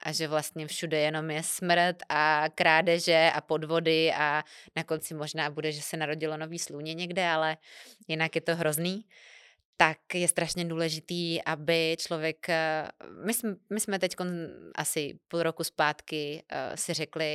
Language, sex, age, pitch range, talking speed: Czech, female, 20-39, 155-180 Hz, 150 wpm